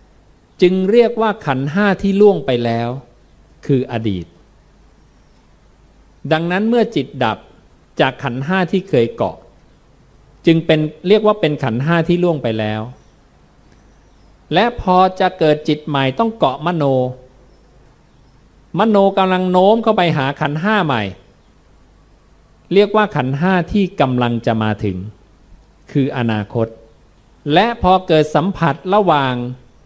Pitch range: 115-175 Hz